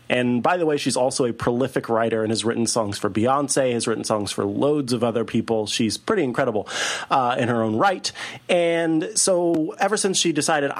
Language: English